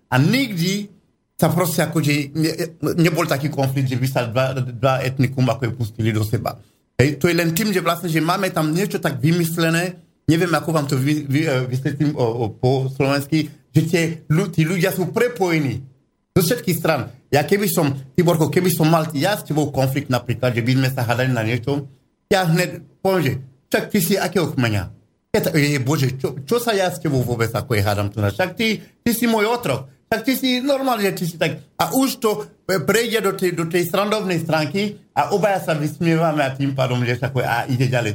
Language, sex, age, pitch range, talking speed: Slovak, male, 50-69, 130-180 Hz, 195 wpm